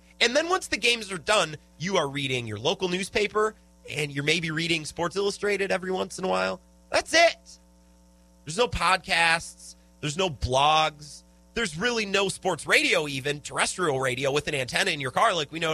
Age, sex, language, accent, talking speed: 30-49, male, English, American, 185 wpm